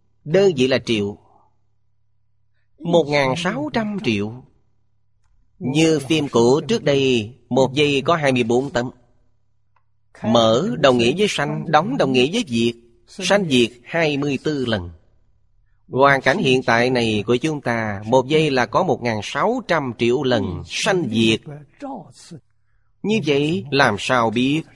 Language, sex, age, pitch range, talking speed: Vietnamese, male, 30-49, 110-140 Hz, 150 wpm